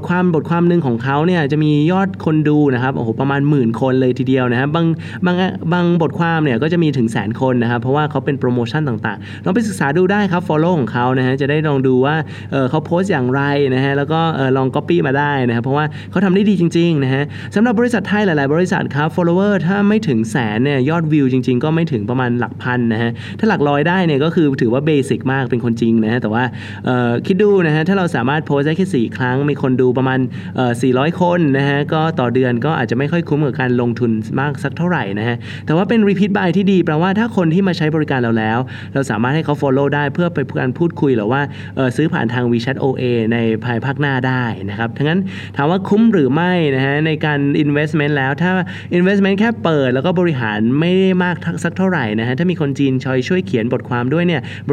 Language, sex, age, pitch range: Thai, male, 20-39, 125-170 Hz